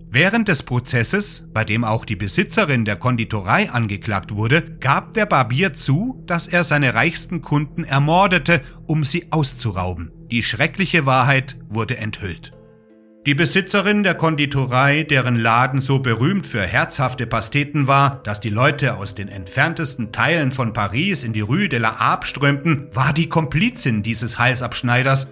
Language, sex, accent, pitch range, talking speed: German, male, German, 120-165 Hz, 150 wpm